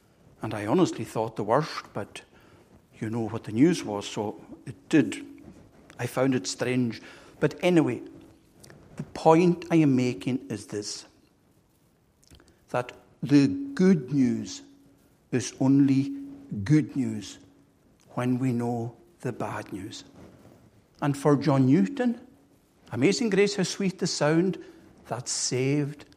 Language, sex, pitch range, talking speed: English, male, 125-175 Hz, 125 wpm